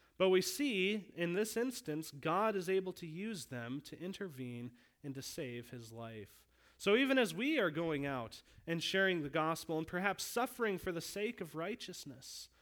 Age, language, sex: 30-49, English, male